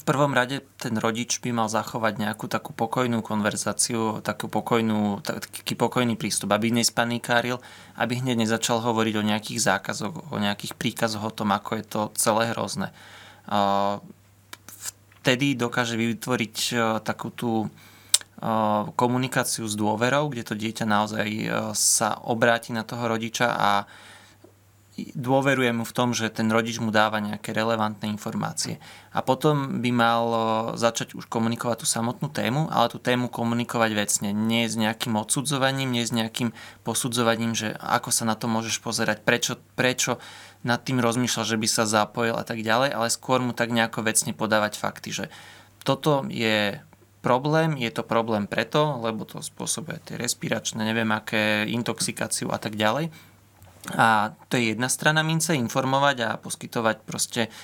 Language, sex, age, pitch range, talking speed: Slovak, male, 20-39, 110-120 Hz, 145 wpm